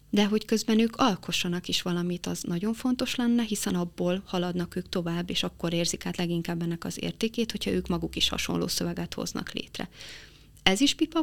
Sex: female